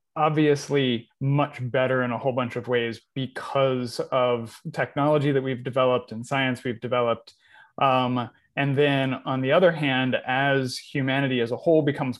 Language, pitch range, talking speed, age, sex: English, 125-140 Hz, 155 wpm, 30-49, male